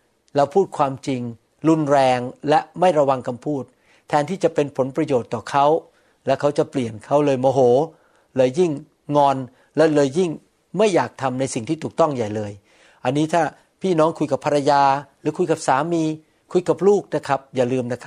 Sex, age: male, 60-79